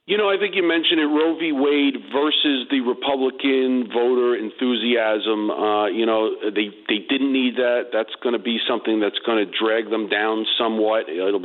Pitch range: 110-130 Hz